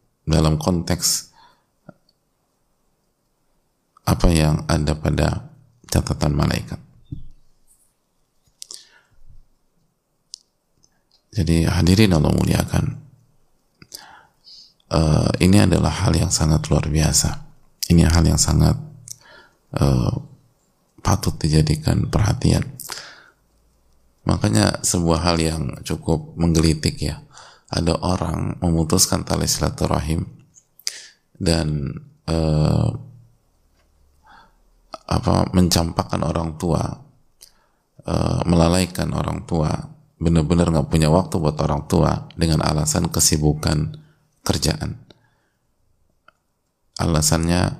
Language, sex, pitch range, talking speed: Indonesian, male, 75-90 Hz, 80 wpm